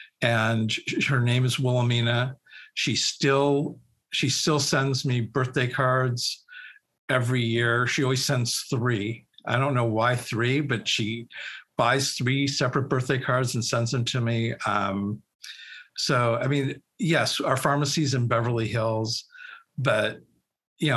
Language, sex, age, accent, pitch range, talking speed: English, male, 50-69, American, 120-140 Hz, 135 wpm